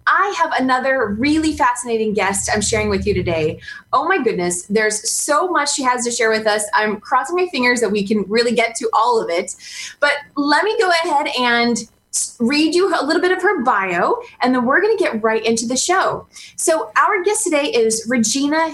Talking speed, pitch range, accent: 210 wpm, 225-325 Hz, American